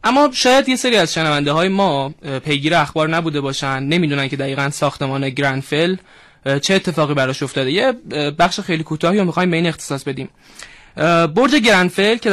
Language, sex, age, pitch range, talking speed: Persian, male, 20-39, 145-200 Hz, 150 wpm